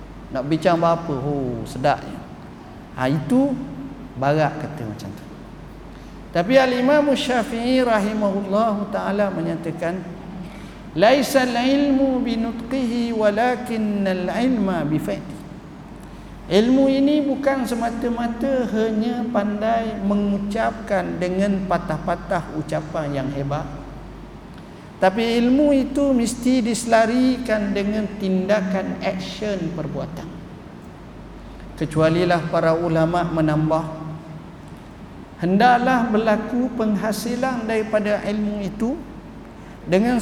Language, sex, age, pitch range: Malay, male, 50-69, 170-235 Hz